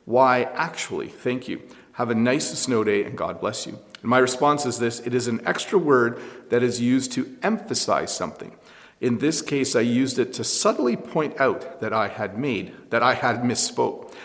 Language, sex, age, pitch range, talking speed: English, male, 40-59, 120-145 Hz, 200 wpm